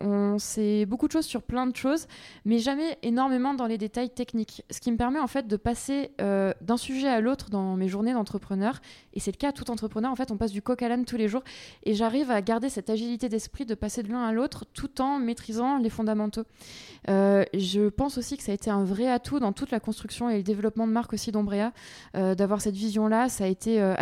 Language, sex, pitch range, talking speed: French, female, 200-240 Hz, 245 wpm